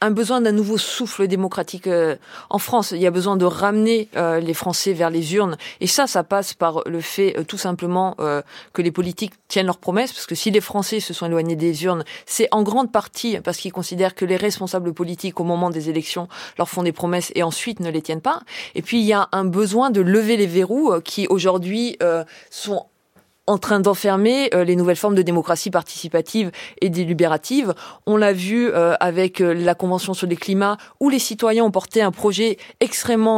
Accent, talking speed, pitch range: French, 210 wpm, 175-215 Hz